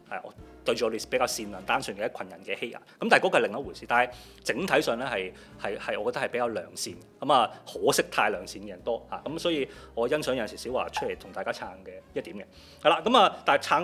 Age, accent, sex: 30-49, native, male